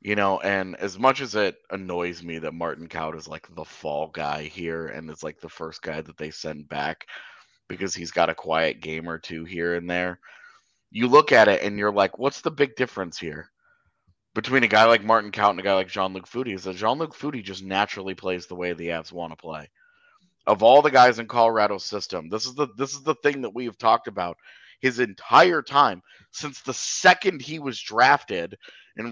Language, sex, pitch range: English, male, 95-150 Hz